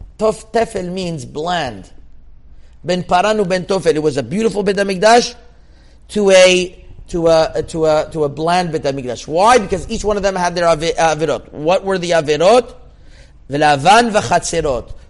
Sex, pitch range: male, 145-185 Hz